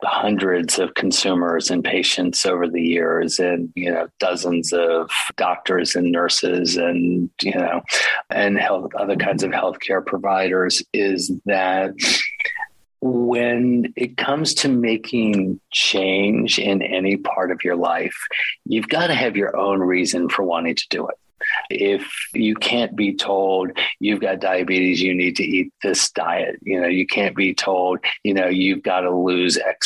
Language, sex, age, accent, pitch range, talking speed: English, male, 40-59, American, 90-105 Hz, 160 wpm